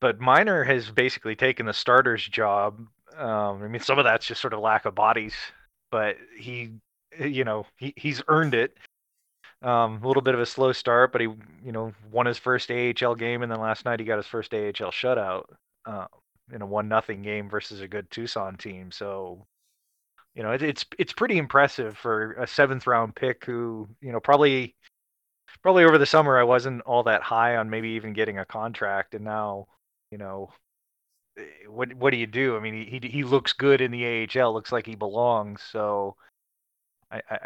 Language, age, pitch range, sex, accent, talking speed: English, 20-39, 105-130 Hz, male, American, 195 wpm